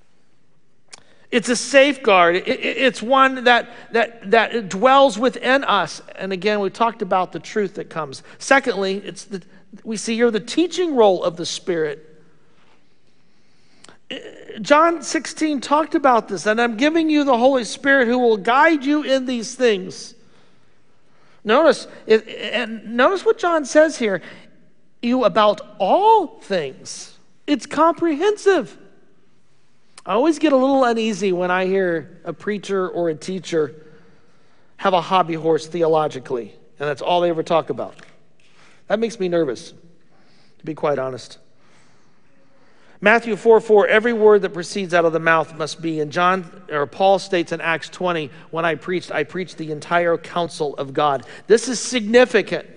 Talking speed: 150 wpm